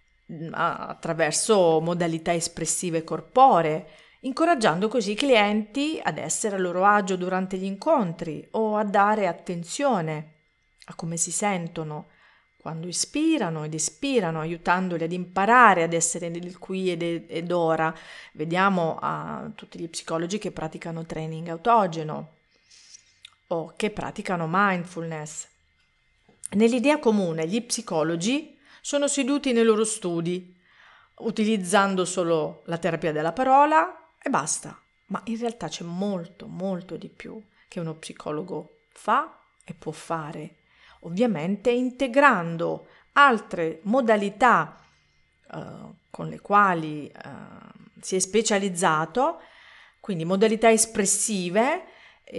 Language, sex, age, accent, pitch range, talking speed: Italian, female, 40-59, native, 165-220 Hz, 110 wpm